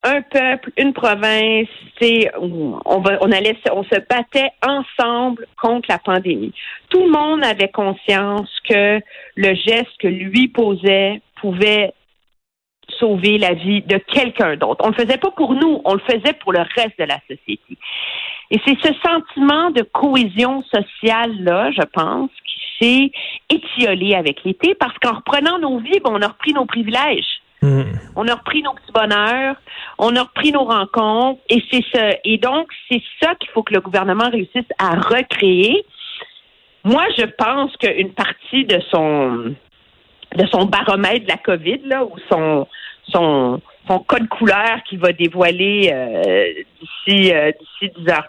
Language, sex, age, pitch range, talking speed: French, female, 50-69, 195-265 Hz, 155 wpm